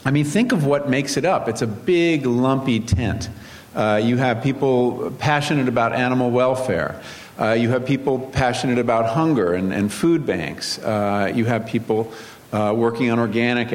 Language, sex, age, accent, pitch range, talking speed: English, male, 50-69, American, 110-145 Hz, 175 wpm